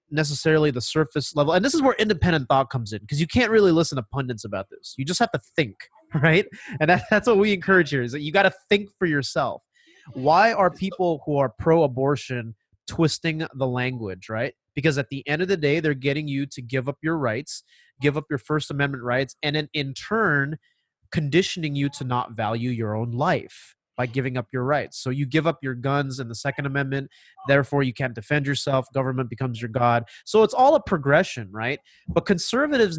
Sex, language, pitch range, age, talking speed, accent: male, English, 135-175 Hz, 30-49, 210 wpm, American